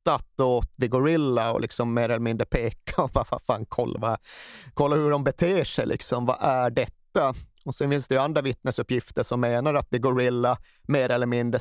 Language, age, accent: Swedish, 30-49, native